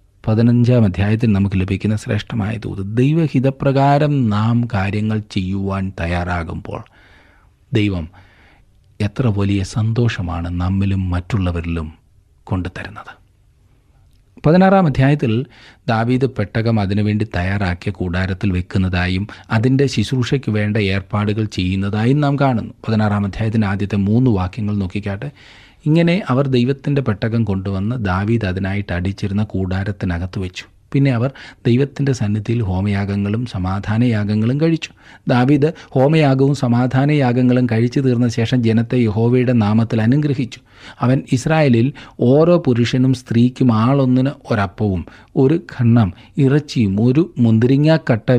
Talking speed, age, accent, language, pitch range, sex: 100 wpm, 30-49, native, Malayalam, 100-130 Hz, male